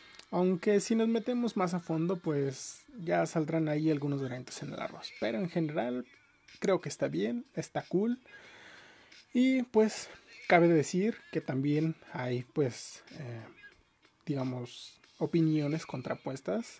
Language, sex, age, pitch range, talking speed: Spanish, male, 30-49, 135-180 Hz, 130 wpm